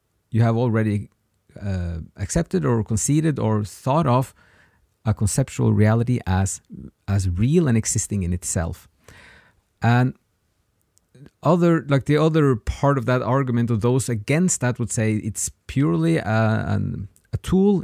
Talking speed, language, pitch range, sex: 135 wpm, English, 100-130 Hz, male